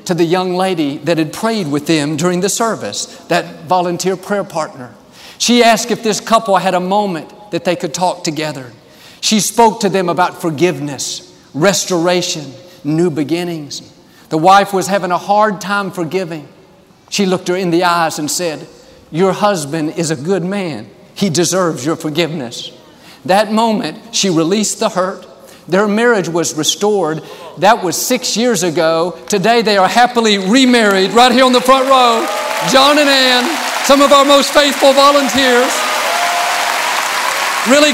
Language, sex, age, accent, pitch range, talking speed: English, male, 50-69, American, 165-225 Hz, 160 wpm